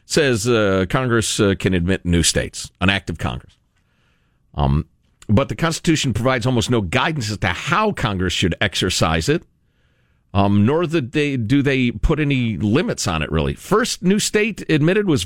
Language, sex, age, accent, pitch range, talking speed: English, male, 50-69, American, 105-160 Hz, 175 wpm